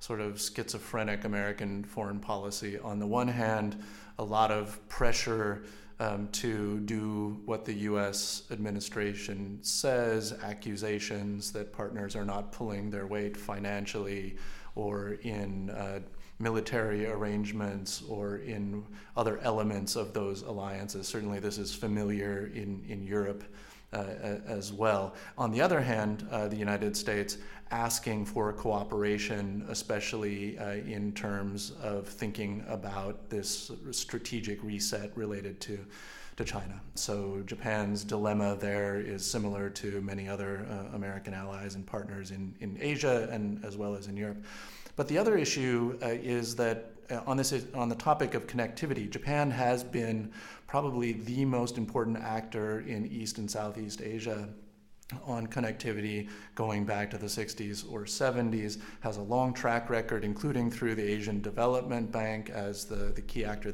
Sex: male